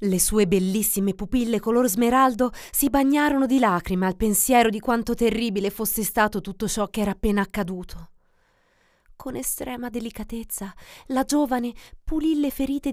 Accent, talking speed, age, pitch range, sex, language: native, 145 wpm, 30-49, 175-235 Hz, female, Italian